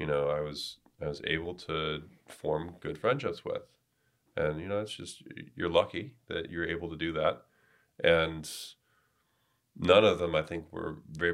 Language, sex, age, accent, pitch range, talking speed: English, male, 30-49, American, 75-90 Hz, 175 wpm